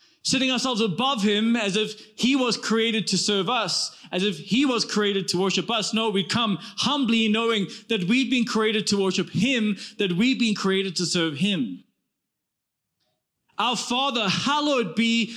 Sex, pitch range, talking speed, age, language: male, 195-240 Hz, 170 wpm, 20-39, English